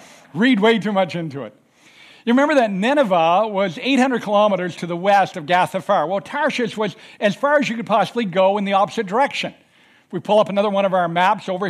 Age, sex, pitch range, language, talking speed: 60-79, male, 180-230 Hz, English, 215 wpm